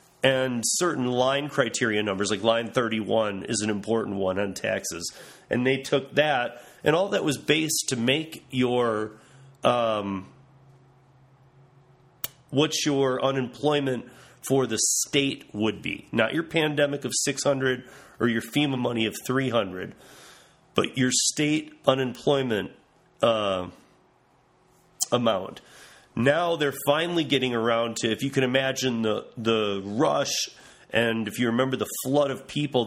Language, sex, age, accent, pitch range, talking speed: English, male, 30-49, American, 115-135 Hz, 135 wpm